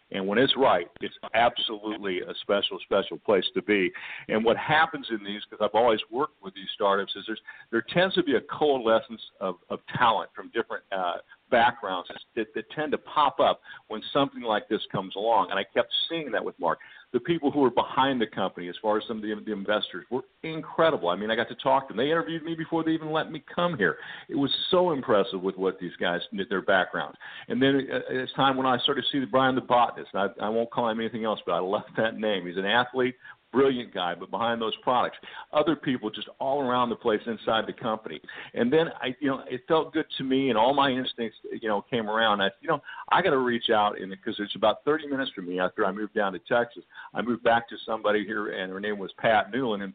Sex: male